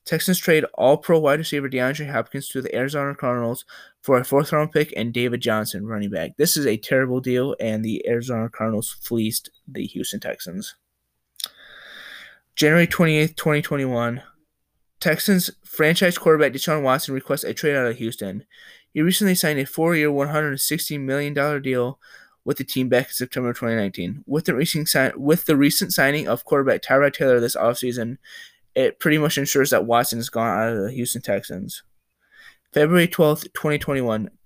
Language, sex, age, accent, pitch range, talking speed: English, male, 20-39, American, 125-150 Hz, 150 wpm